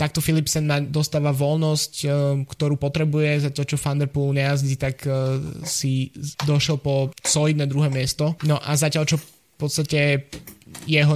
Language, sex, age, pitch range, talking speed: Slovak, male, 20-39, 130-145 Hz, 135 wpm